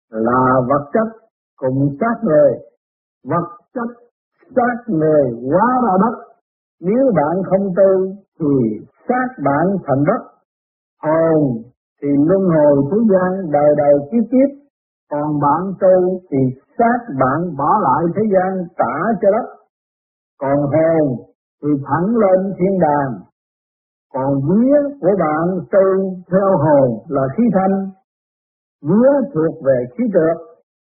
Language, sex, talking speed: Vietnamese, male, 130 wpm